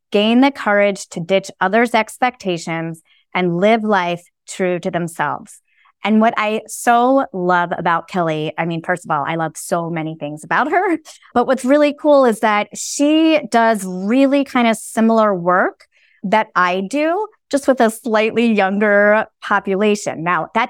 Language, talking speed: English, 160 wpm